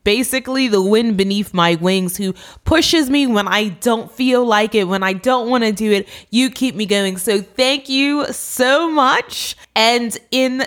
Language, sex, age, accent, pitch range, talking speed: English, female, 20-39, American, 195-265 Hz, 185 wpm